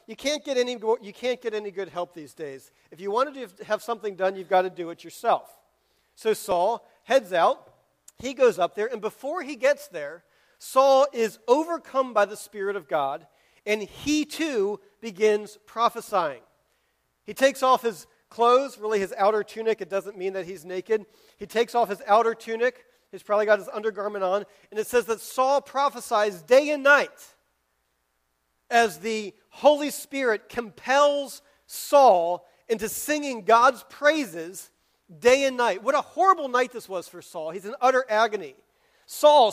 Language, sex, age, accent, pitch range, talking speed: English, male, 40-59, American, 200-270 Hz, 165 wpm